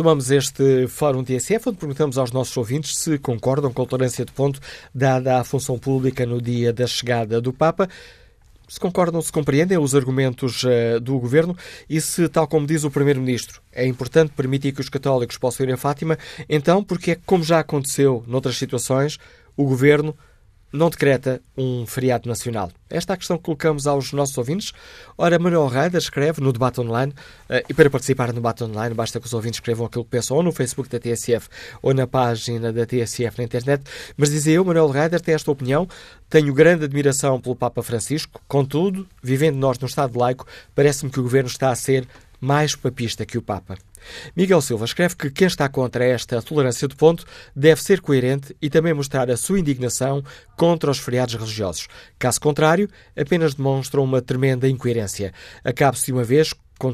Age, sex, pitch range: 20-39, male, 125-155 Hz